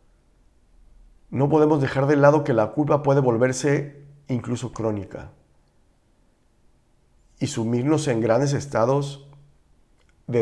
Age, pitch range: 50-69, 105-140 Hz